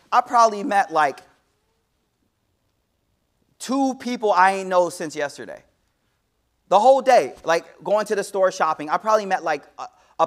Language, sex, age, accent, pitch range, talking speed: English, male, 30-49, American, 170-270 Hz, 145 wpm